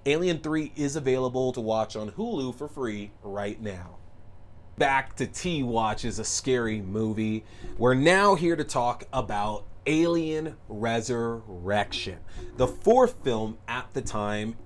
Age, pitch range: 30-49, 105-120 Hz